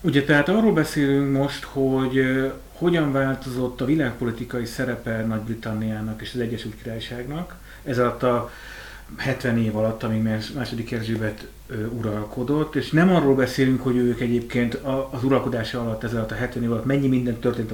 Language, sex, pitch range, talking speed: Hungarian, male, 115-140 Hz, 150 wpm